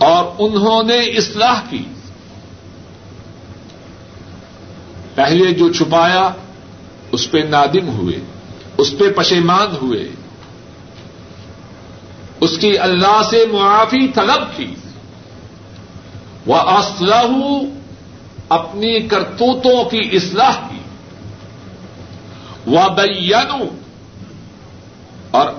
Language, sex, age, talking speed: Urdu, male, 60-79, 75 wpm